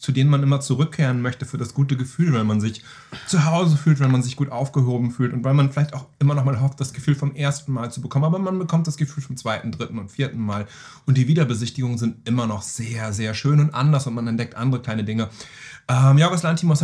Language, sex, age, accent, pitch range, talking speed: German, male, 30-49, German, 120-145 Hz, 245 wpm